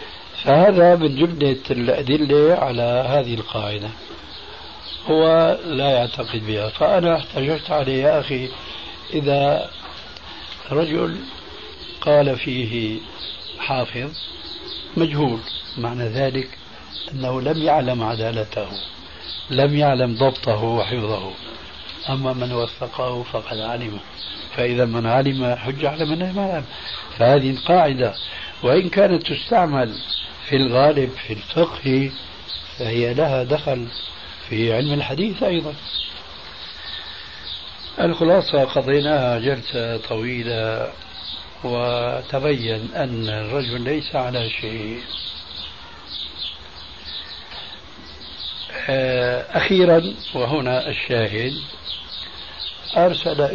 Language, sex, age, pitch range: Arabic, male, 60-79, 110-150 Hz